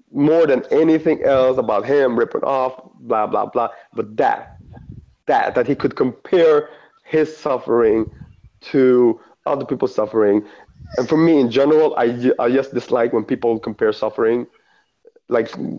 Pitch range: 125-165 Hz